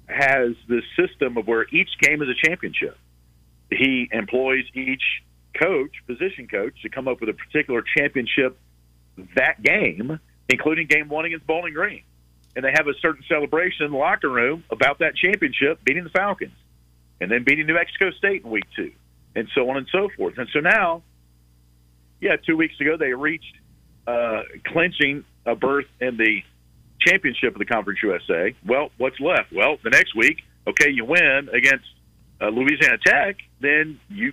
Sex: male